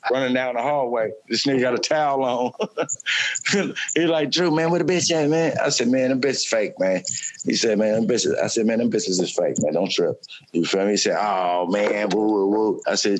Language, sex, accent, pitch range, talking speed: English, male, American, 110-135 Hz, 240 wpm